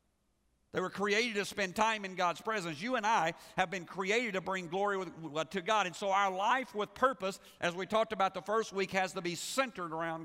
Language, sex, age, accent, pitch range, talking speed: English, male, 50-69, American, 160-200 Hz, 230 wpm